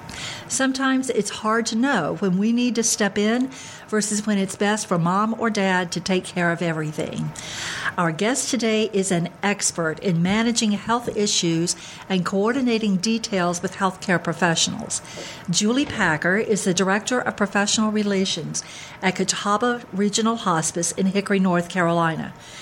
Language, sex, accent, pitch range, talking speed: English, female, American, 180-225 Hz, 150 wpm